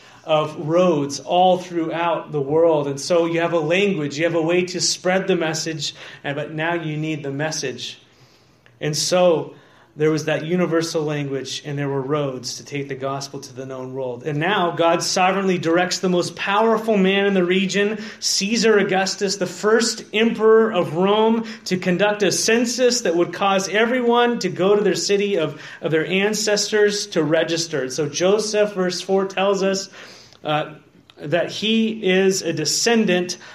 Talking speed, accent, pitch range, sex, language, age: 175 wpm, American, 150-195 Hz, male, English, 30-49